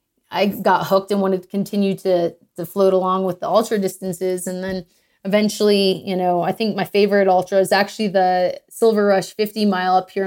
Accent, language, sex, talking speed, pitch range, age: American, English, female, 200 wpm, 180-200 Hz, 30-49